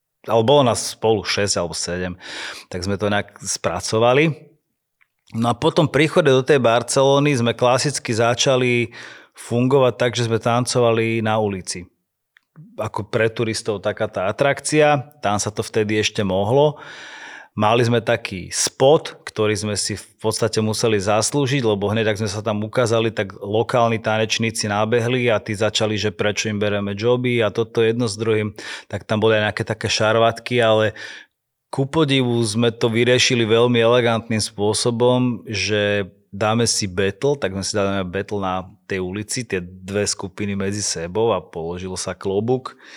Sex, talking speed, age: male, 155 wpm, 30-49